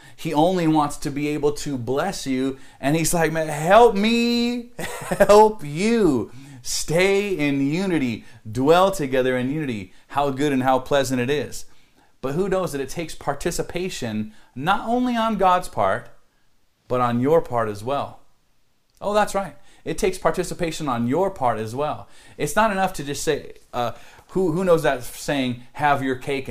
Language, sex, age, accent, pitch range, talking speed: English, male, 40-59, American, 125-170 Hz, 170 wpm